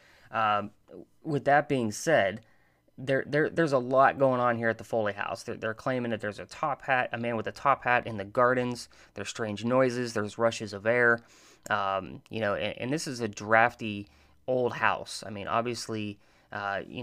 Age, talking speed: 20-39, 200 wpm